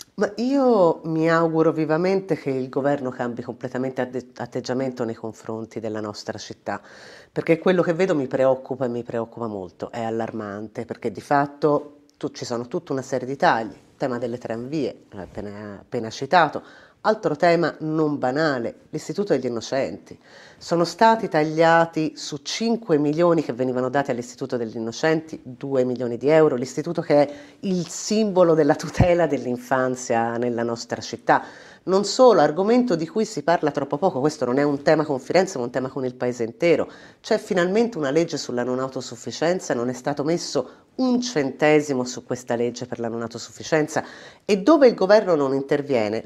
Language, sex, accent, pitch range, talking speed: Italian, female, native, 125-165 Hz, 165 wpm